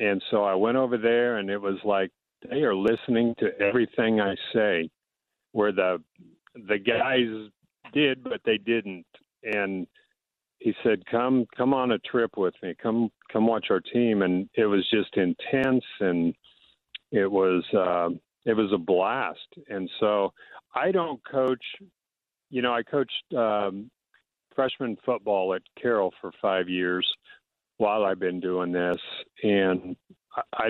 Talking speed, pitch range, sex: 150 wpm, 95-125 Hz, male